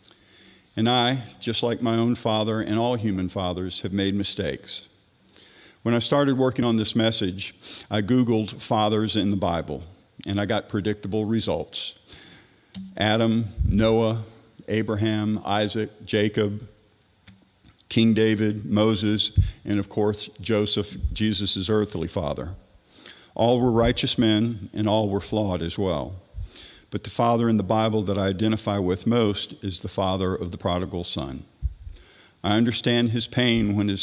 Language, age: English, 50-69